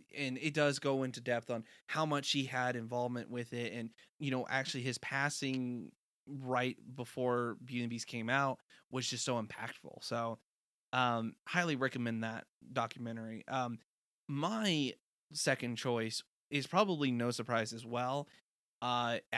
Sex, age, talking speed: male, 20-39, 150 wpm